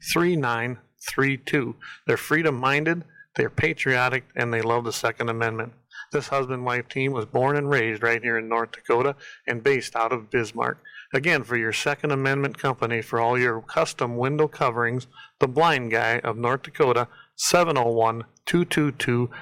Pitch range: 120-155 Hz